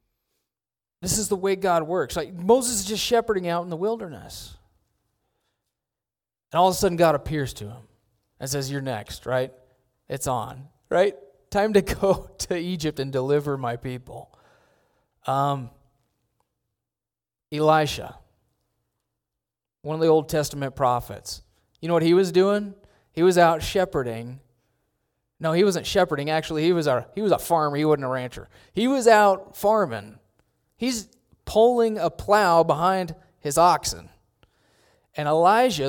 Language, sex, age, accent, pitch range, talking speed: English, male, 30-49, American, 130-185 Hz, 145 wpm